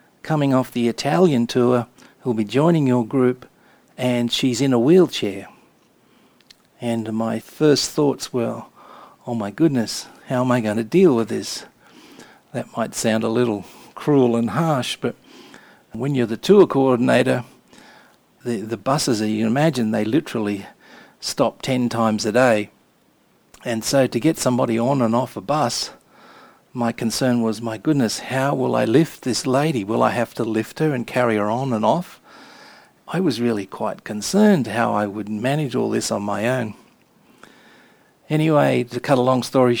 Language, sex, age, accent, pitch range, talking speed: English, male, 50-69, Australian, 110-135 Hz, 165 wpm